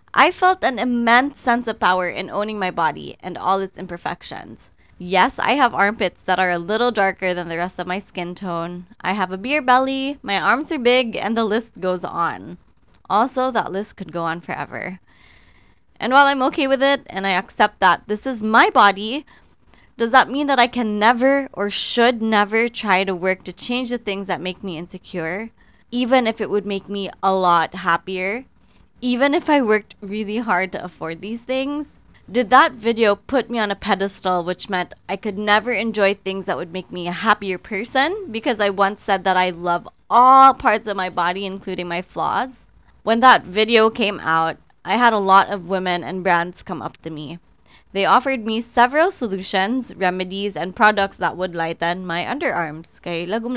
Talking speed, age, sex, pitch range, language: 195 wpm, 20-39, female, 185-240 Hz, Filipino